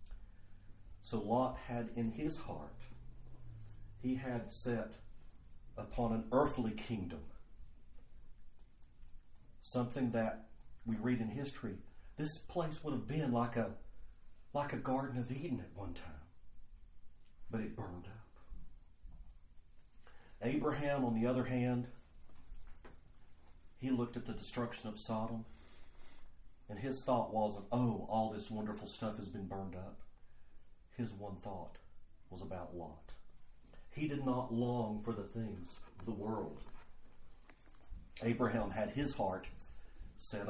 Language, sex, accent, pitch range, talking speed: English, male, American, 80-115 Hz, 125 wpm